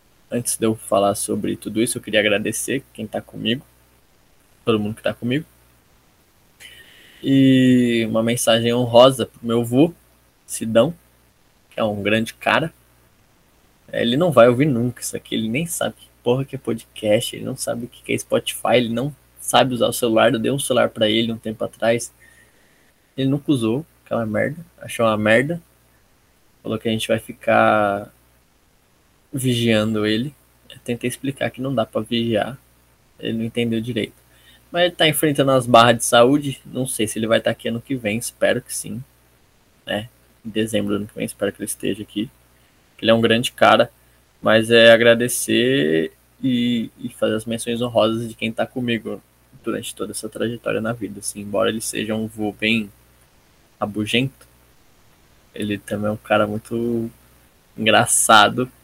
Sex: male